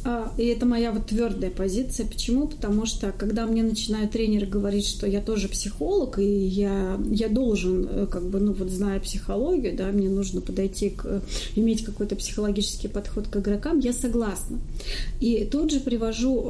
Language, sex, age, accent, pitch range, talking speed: Russian, female, 30-49, native, 210-255 Hz, 165 wpm